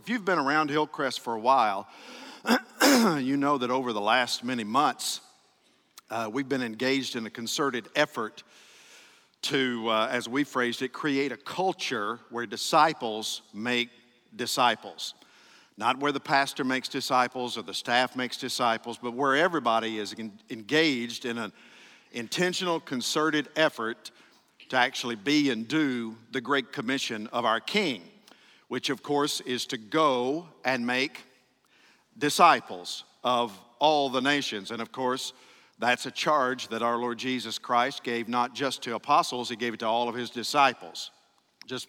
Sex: male